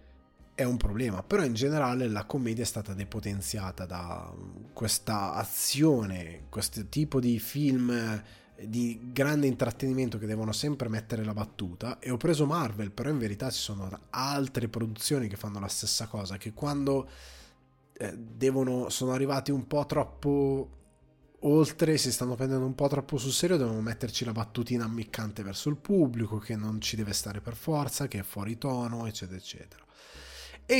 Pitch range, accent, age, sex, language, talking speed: 105-140 Hz, native, 20-39, male, Italian, 160 wpm